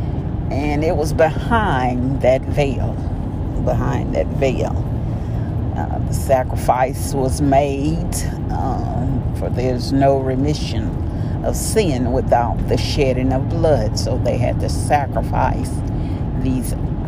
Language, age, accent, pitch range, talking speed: English, 50-69, American, 105-130 Hz, 110 wpm